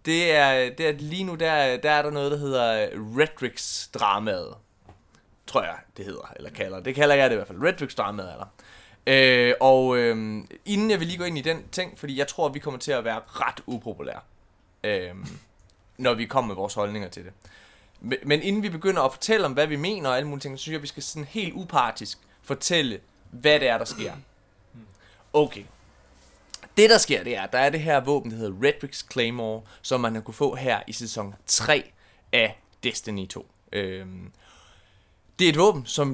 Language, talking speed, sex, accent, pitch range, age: Danish, 210 wpm, male, native, 105-145 Hz, 20-39